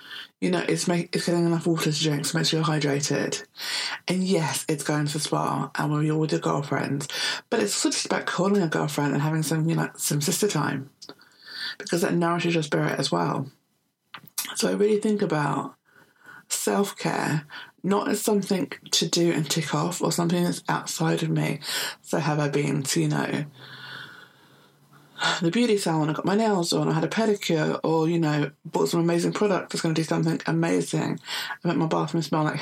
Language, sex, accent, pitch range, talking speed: English, female, British, 150-170 Hz, 205 wpm